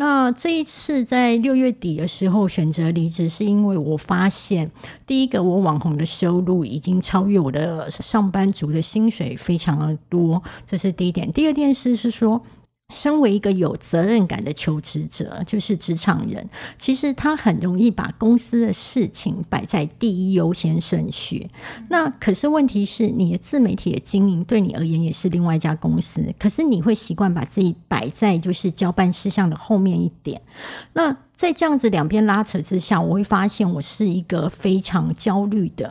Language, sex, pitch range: Chinese, female, 170-210 Hz